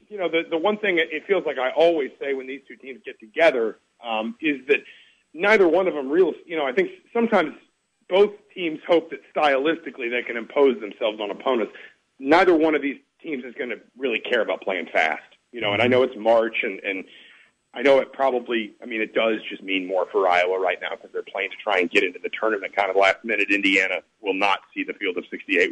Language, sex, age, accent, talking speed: English, male, 40-59, American, 235 wpm